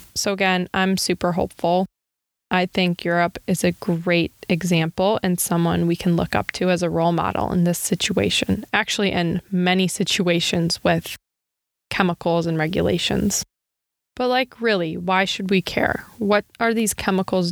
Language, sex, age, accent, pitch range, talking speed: English, female, 20-39, American, 170-195 Hz, 155 wpm